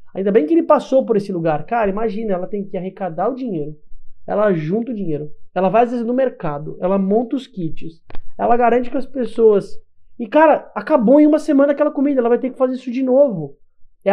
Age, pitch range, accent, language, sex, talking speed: 20-39, 180-245 Hz, Brazilian, Portuguese, male, 220 wpm